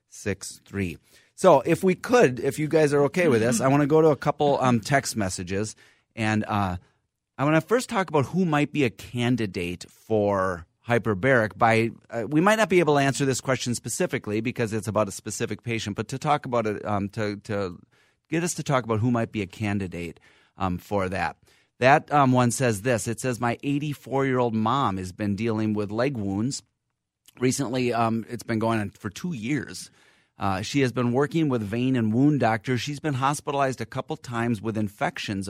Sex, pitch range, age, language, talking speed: male, 110-140 Hz, 30-49, English, 210 wpm